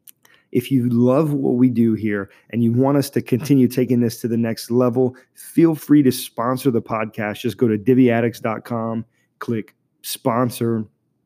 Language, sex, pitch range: English, male, 115-130 Hz